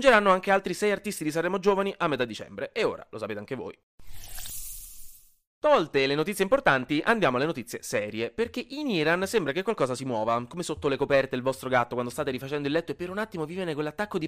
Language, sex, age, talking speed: Italian, male, 20-39, 225 wpm